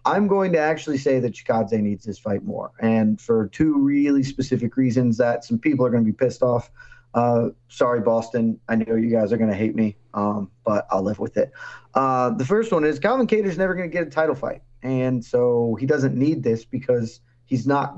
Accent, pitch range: American, 115-140 Hz